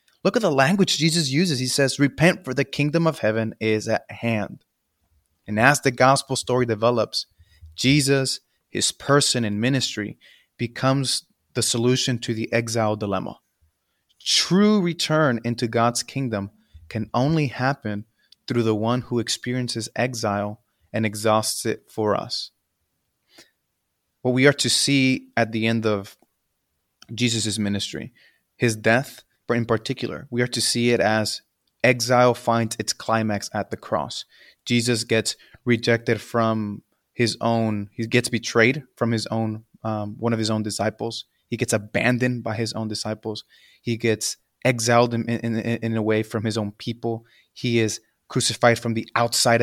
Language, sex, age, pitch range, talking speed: English, male, 30-49, 110-125 Hz, 150 wpm